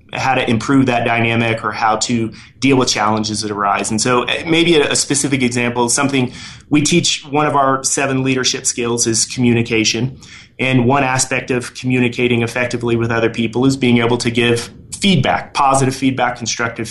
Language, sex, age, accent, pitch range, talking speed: English, male, 30-49, American, 115-135 Hz, 170 wpm